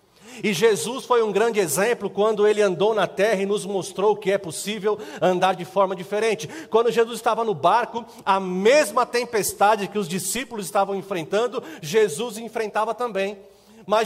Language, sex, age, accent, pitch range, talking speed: Portuguese, male, 40-59, Brazilian, 195-230 Hz, 160 wpm